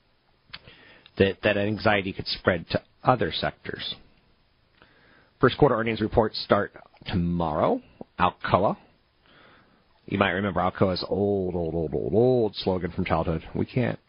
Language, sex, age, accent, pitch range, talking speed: English, male, 40-59, American, 85-115 Hz, 120 wpm